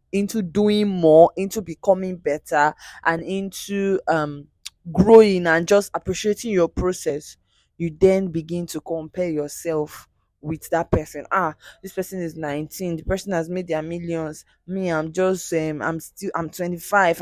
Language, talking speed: English, 150 wpm